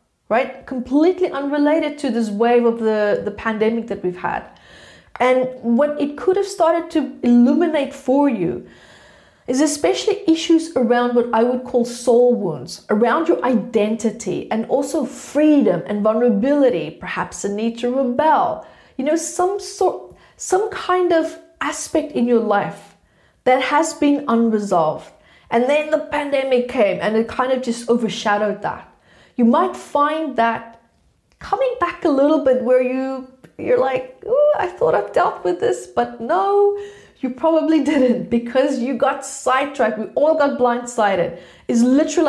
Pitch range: 225-295 Hz